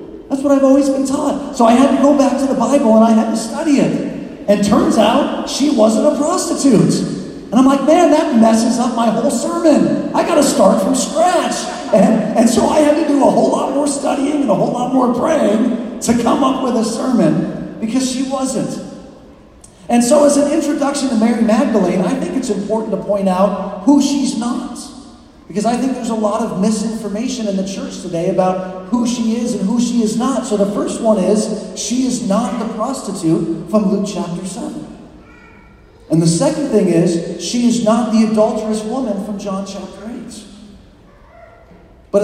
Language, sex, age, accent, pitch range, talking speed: English, male, 40-59, American, 205-270 Hz, 195 wpm